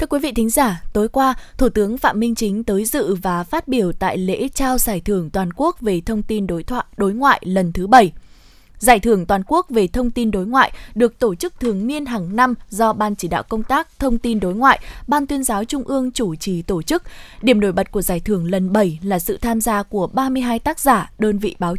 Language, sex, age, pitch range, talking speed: Vietnamese, female, 20-39, 195-255 Hz, 240 wpm